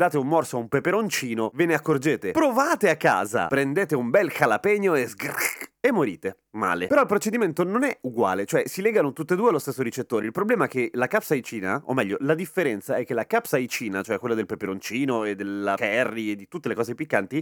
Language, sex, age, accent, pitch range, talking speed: Italian, male, 30-49, native, 115-185 Hz, 215 wpm